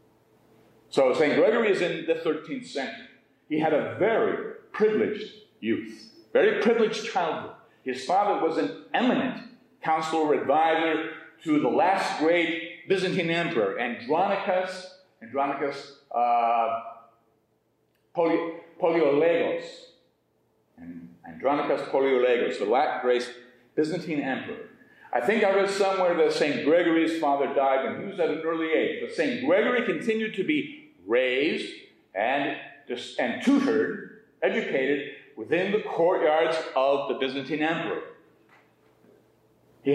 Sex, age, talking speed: male, 50-69, 120 wpm